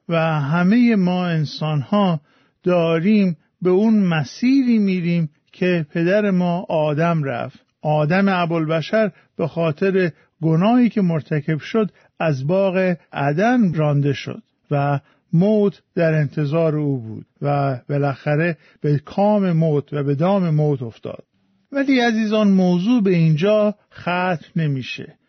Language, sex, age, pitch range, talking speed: Persian, male, 50-69, 155-205 Hz, 120 wpm